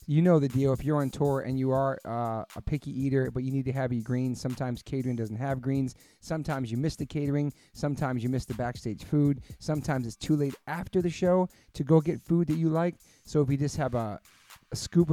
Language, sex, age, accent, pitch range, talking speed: English, male, 30-49, American, 125-145 Hz, 240 wpm